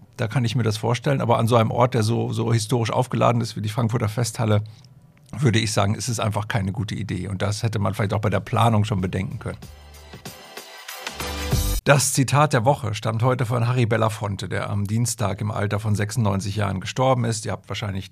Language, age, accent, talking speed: German, 50-69, German, 210 wpm